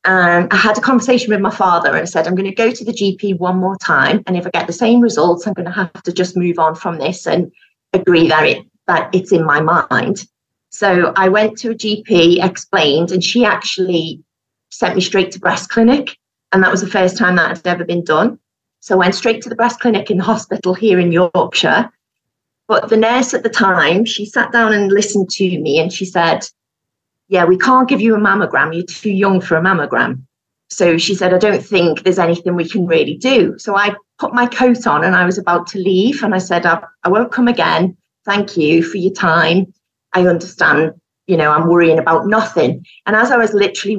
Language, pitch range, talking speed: English, 170-210 Hz, 225 wpm